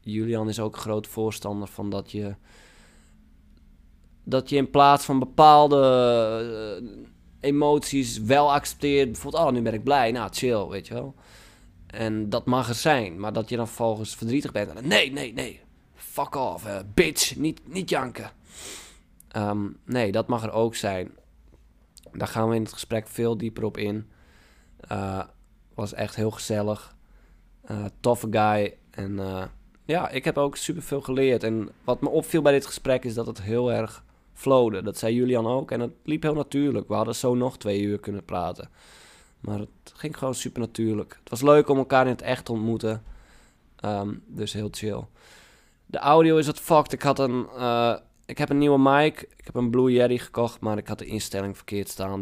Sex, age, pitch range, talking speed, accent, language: male, 20-39, 105-130 Hz, 185 wpm, Dutch, Dutch